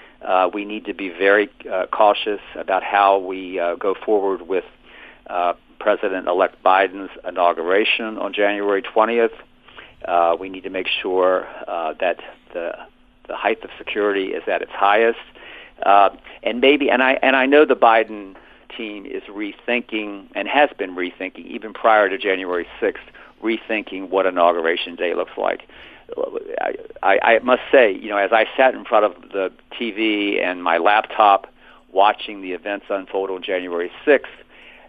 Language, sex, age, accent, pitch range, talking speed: English, male, 50-69, American, 95-120 Hz, 155 wpm